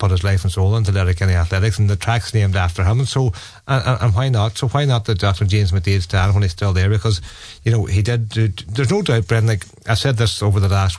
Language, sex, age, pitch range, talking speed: English, male, 40-59, 95-110 Hz, 275 wpm